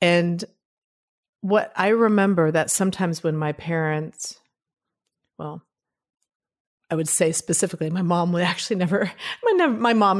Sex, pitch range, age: female, 155-185 Hz, 40-59